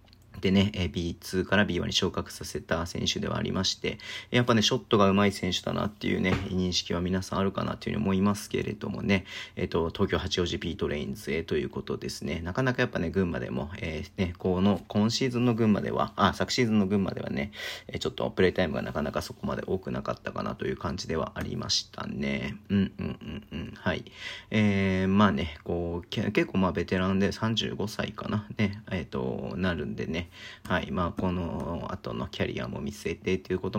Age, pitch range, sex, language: 40-59, 90-110 Hz, male, Japanese